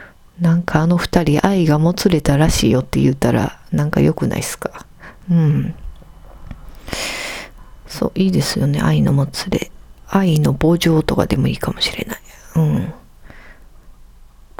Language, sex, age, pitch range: Japanese, female, 40-59, 155-215 Hz